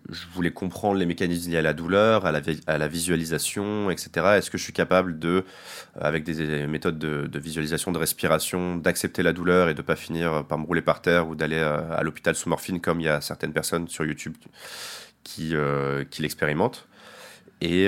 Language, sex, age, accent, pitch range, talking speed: French, male, 20-39, French, 80-95 Hz, 210 wpm